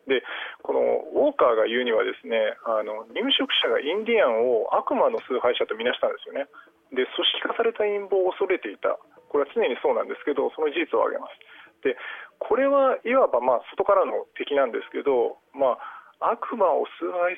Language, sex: Japanese, male